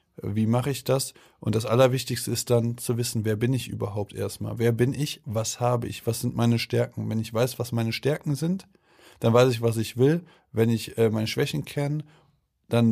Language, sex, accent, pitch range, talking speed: German, male, German, 115-130 Hz, 210 wpm